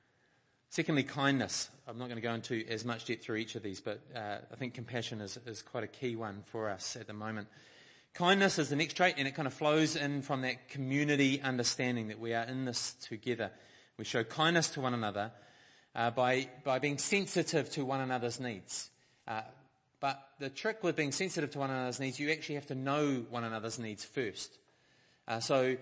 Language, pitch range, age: English, 120-145 Hz, 30-49